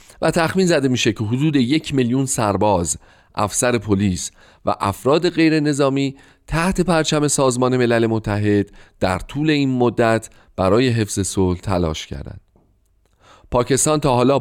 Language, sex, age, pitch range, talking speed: Persian, male, 40-59, 95-135 Hz, 135 wpm